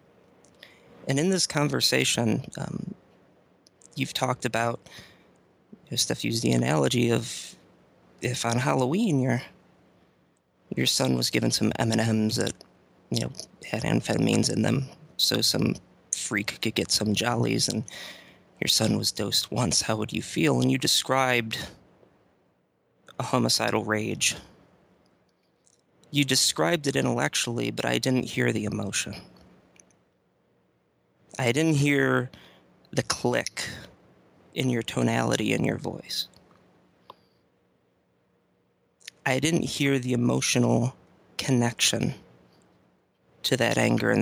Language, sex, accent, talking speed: English, male, American, 120 wpm